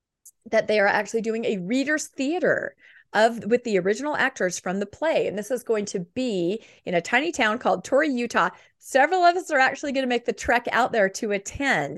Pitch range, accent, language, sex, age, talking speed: 185-250 Hz, American, English, female, 40-59, 215 wpm